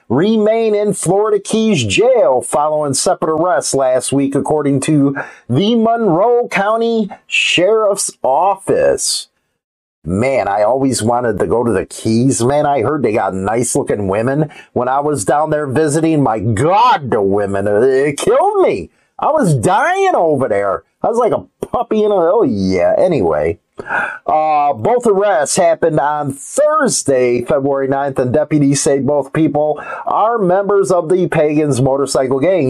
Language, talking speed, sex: English, 150 wpm, male